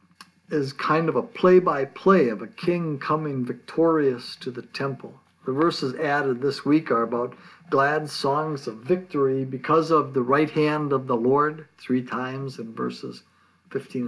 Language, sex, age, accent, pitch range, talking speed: English, male, 60-79, American, 130-165 Hz, 160 wpm